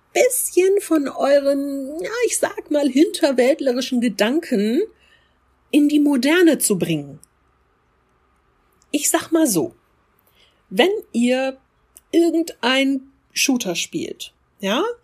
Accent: German